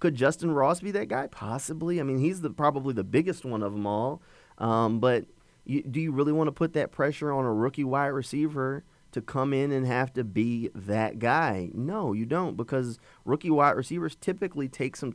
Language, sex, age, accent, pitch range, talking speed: English, male, 30-49, American, 100-135 Hz, 210 wpm